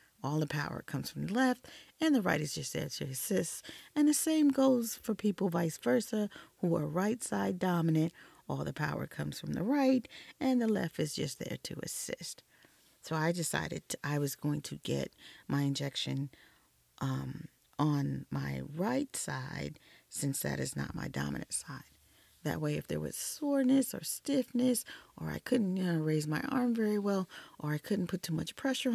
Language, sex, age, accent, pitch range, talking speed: English, female, 40-59, American, 155-250 Hz, 185 wpm